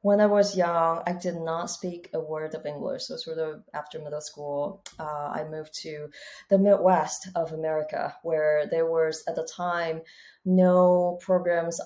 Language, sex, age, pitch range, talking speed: English, female, 30-49, 155-190 Hz, 170 wpm